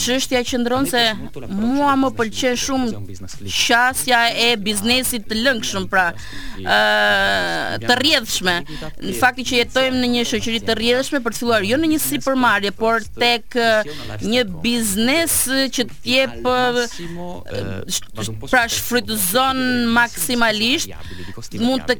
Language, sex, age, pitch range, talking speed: English, female, 30-49, 215-255 Hz, 120 wpm